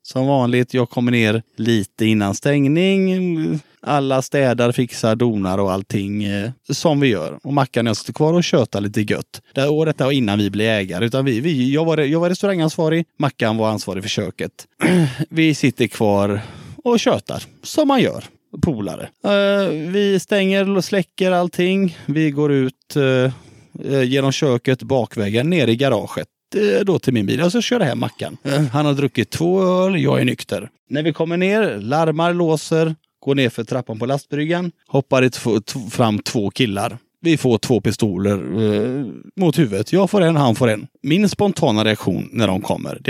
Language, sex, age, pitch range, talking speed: Swedish, male, 30-49, 115-165 Hz, 180 wpm